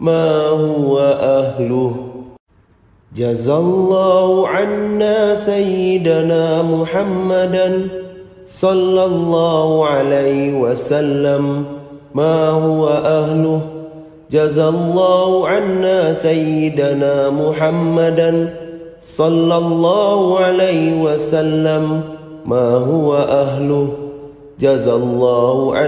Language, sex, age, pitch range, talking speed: Indonesian, male, 30-49, 145-185 Hz, 65 wpm